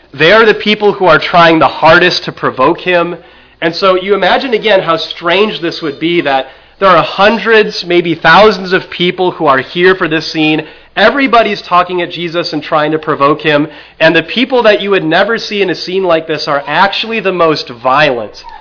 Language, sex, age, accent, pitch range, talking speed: English, male, 30-49, American, 140-195 Hz, 205 wpm